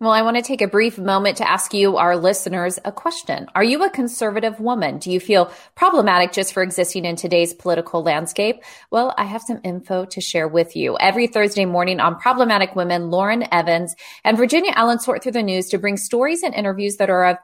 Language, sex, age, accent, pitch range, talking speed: English, female, 30-49, American, 180-225 Hz, 215 wpm